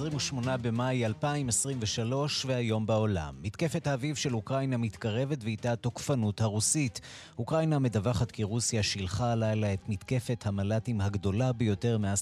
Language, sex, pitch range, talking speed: Hebrew, male, 105-125 Hz, 125 wpm